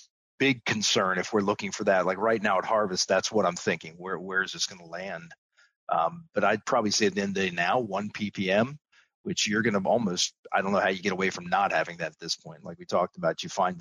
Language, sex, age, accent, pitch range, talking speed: English, male, 40-59, American, 100-125 Hz, 270 wpm